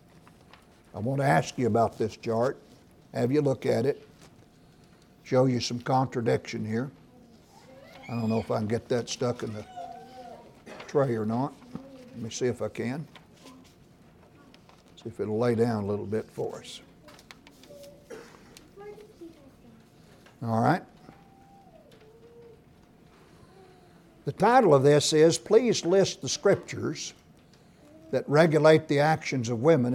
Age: 60-79